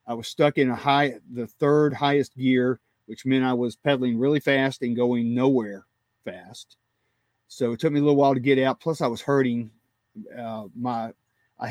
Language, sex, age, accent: English, male, 40-59, American